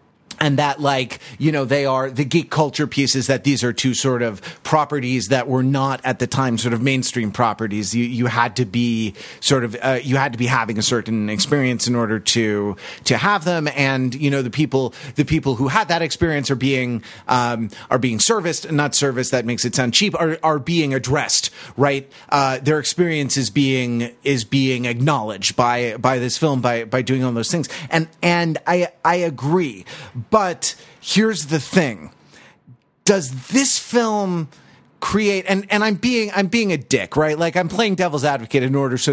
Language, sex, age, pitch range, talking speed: English, male, 30-49, 125-170 Hz, 195 wpm